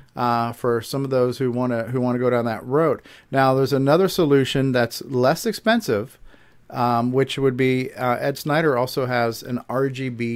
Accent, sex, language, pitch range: American, male, English, 120-140 Hz